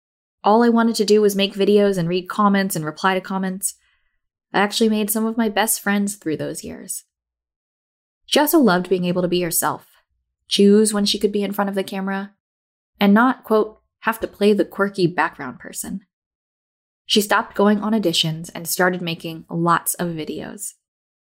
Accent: American